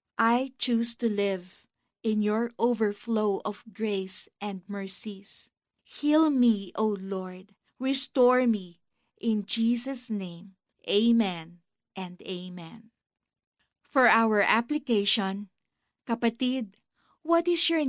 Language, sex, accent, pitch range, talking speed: Filipino, female, native, 200-255 Hz, 100 wpm